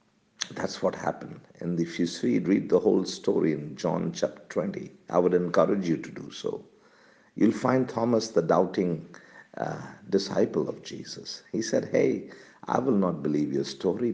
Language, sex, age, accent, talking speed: English, male, 50-69, Indian, 165 wpm